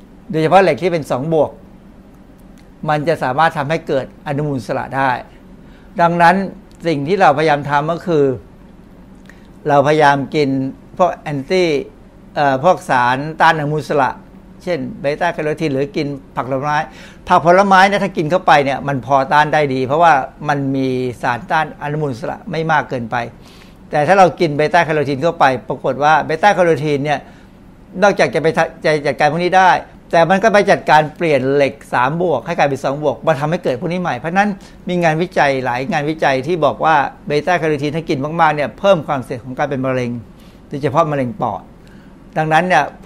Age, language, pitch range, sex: 60-79, Thai, 140-175 Hz, male